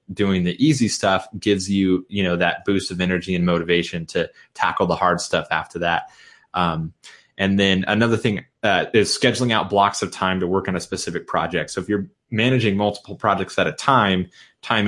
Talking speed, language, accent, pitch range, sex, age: 200 wpm, English, American, 90-100 Hz, male, 30-49